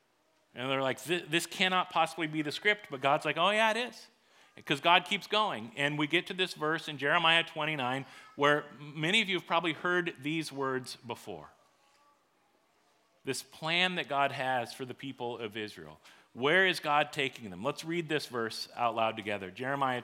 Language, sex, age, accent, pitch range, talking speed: English, male, 40-59, American, 125-165 Hz, 185 wpm